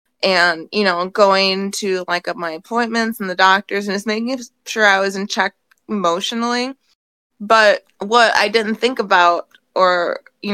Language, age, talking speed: English, 20-39, 170 wpm